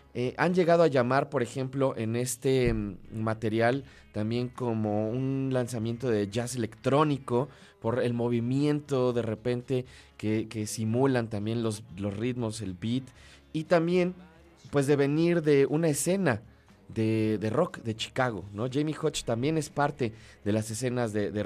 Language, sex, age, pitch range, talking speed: Spanish, male, 30-49, 110-140 Hz, 155 wpm